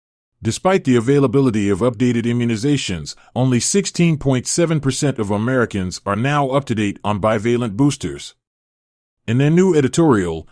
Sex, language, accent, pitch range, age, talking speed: male, English, American, 105-145 Hz, 30-49, 115 wpm